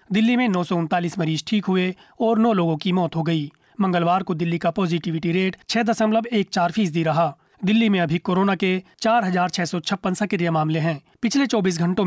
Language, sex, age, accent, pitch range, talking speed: Hindi, male, 30-49, native, 170-205 Hz, 195 wpm